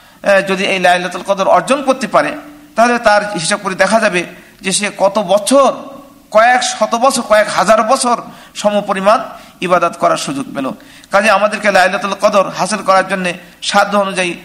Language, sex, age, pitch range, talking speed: Bengali, male, 50-69, 200-240 Hz, 110 wpm